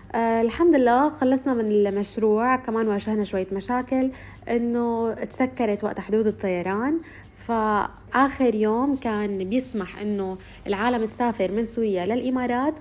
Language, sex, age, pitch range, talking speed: Arabic, female, 20-39, 215-260 Hz, 110 wpm